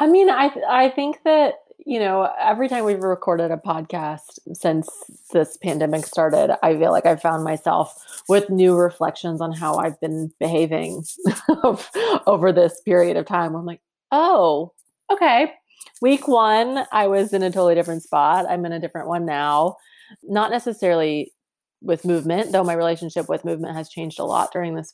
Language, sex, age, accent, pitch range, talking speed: English, female, 30-49, American, 170-215 Hz, 175 wpm